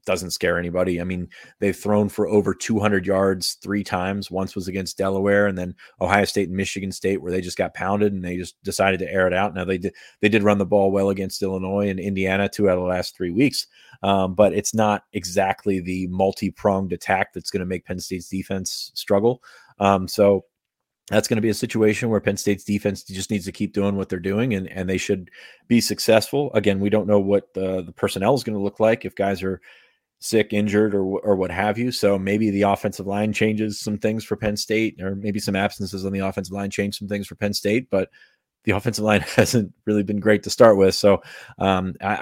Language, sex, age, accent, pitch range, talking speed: English, male, 30-49, American, 95-105 Hz, 230 wpm